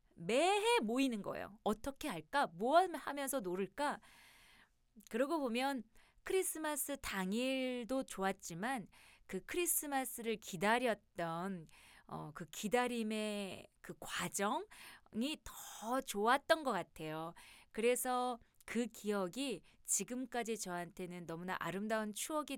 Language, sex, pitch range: Korean, female, 180-250 Hz